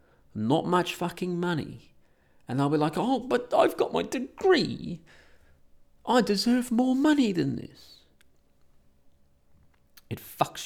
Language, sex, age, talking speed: English, male, 30-49, 125 wpm